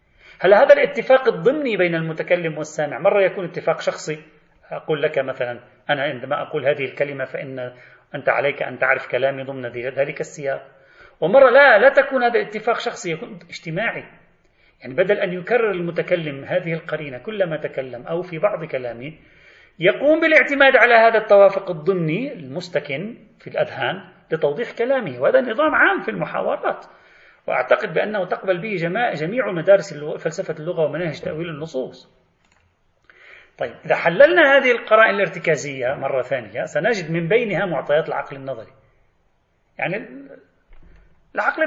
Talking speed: 135 wpm